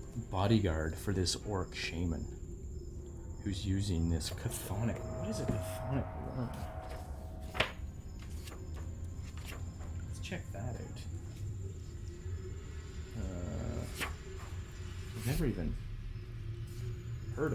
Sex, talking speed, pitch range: male, 80 wpm, 90-110 Hz